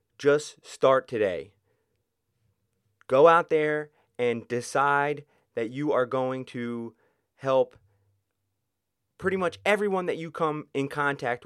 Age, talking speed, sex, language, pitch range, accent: 30-49, 115 wpm, male, English, 115-145 Hz, American